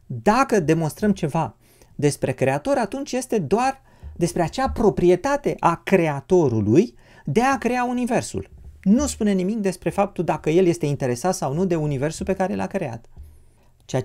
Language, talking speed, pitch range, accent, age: Romanian, 150 wpm, 125-190 Hz, native, 30-49